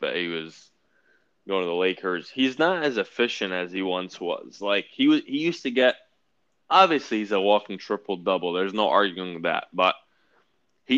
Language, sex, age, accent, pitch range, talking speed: English, male, 20-39, American, 95-115 Hz, 190 wpm